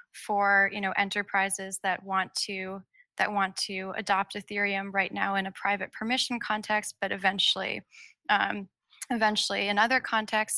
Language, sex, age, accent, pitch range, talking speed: English, female, 20-39, American, 195-225 Hz, 145 wpm